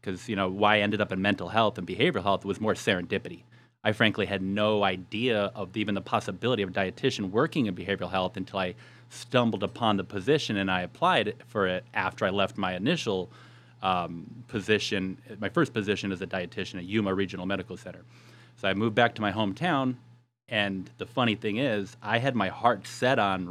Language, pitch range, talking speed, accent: English, 100-125 Hz, 200 wpm, American